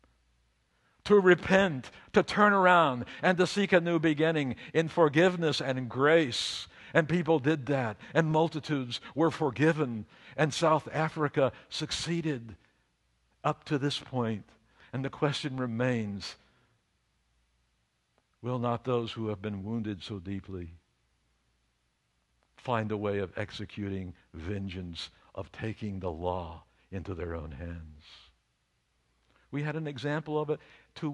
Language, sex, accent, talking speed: English, male, American, 125 wpm